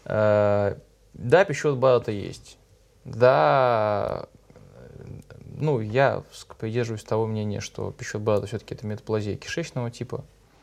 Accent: native